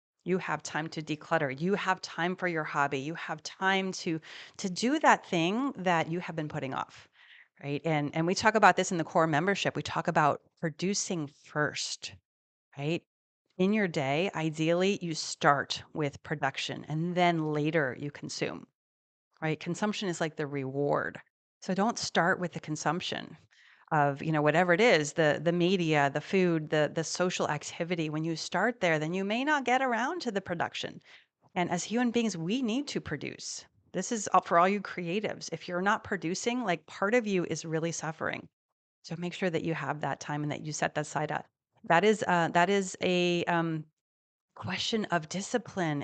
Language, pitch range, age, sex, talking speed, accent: English, 155-190 Hz, 30-49, female, 190 wpm, American